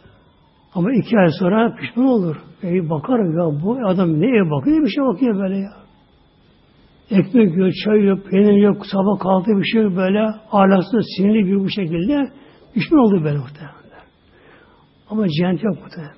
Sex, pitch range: male, 185-250 Hz